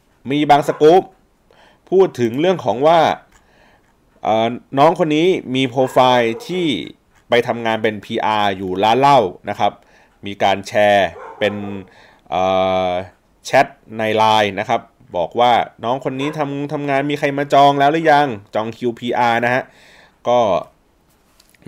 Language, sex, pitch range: Thai, male, 100-140 Hz